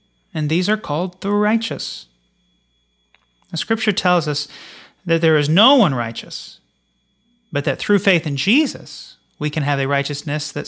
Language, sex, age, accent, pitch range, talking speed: English, male, 30-49, American, 140-210 Hz, 150 wpm